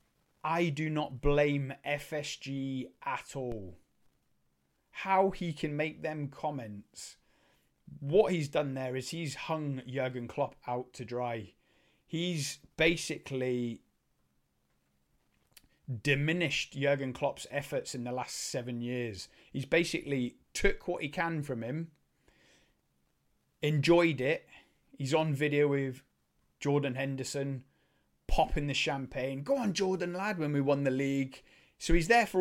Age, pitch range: 30-49, 125-155 Hz